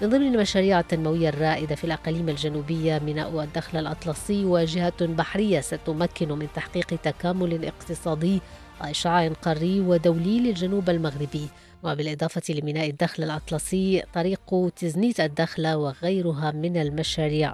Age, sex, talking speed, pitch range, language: 20-39, female, 115 wpm, 155-180 Hz, English